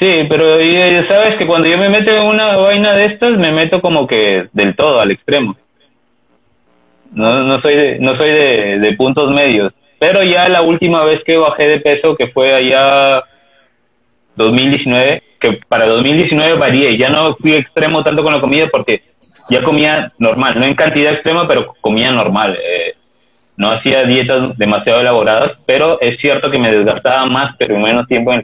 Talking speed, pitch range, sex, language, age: 180 wpm, 120-165 Hz, male, Spanish, 20-39